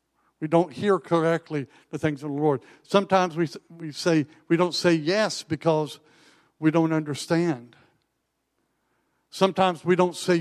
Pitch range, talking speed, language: 150-215 Hz, 145 wpm, English